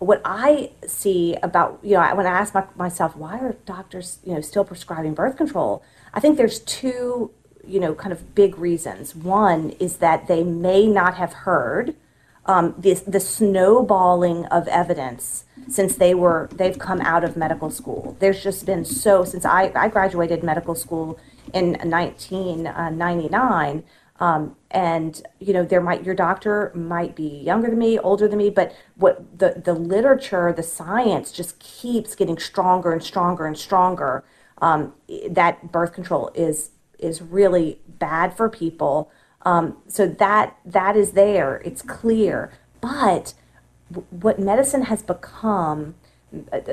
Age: 30-49